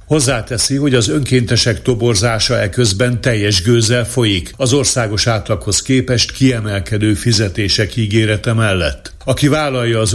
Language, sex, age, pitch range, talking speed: Hungarian, male, 60-79, 105-125 Hz, 120 wpm